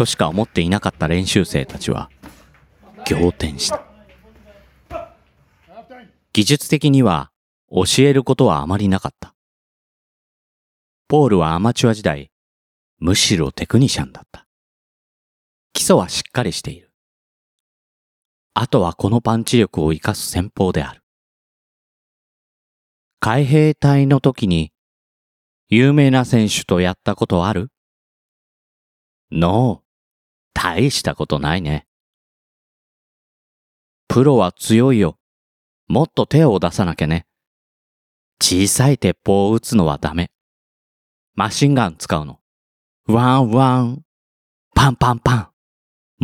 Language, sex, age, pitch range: Japanese, male, 40-59, 75-125 Hz